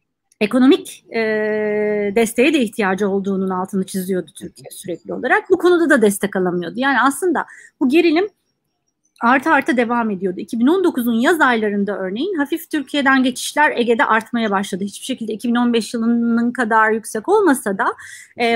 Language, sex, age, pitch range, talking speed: Turkish, female, 30-49, 210-300 Hz, 140 wpm